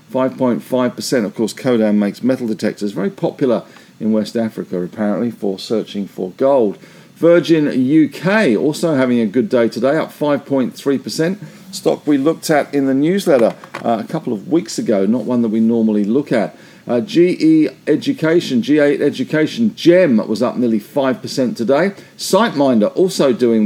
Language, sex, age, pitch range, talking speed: English, male, 50-69, 115-160 Hz, 155 wpm